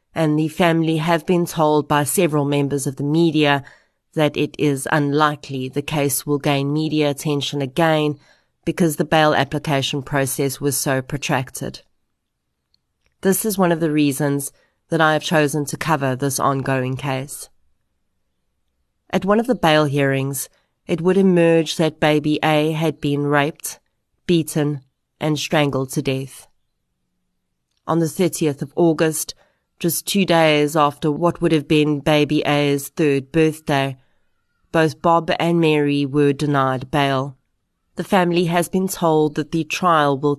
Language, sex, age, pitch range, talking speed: English, female, 30-49, 140-165 Hz, 145 wpm